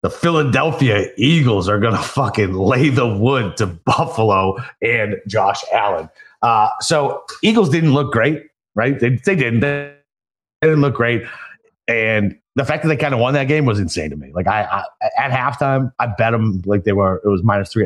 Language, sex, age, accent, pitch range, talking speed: English, male, 30-49, American, 110-150 Hz, 190 wpm